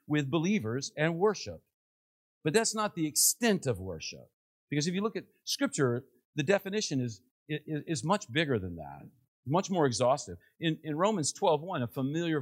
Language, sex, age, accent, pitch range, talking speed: English, male, 50-69, American, 115-180 Hz, 170 wpm